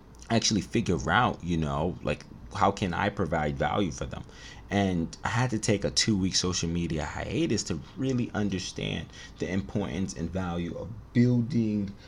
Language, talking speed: English, 160 wpm